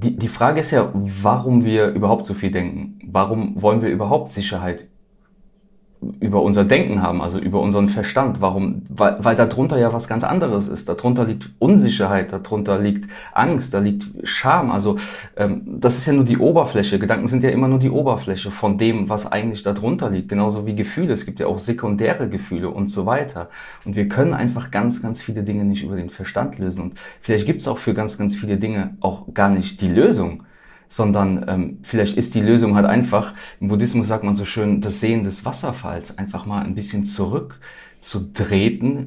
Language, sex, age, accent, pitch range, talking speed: German, male, 30-49, German, 100-120 Hz, 190 wpm